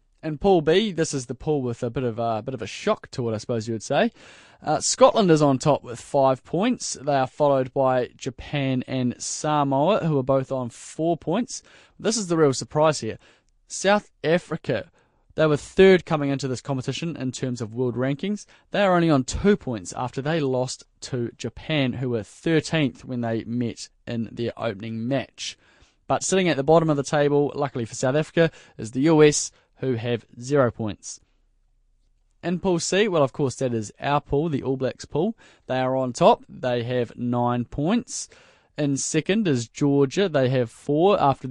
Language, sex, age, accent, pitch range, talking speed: English, male, 20-39, Australian, 125-160 Hz, 195 wpm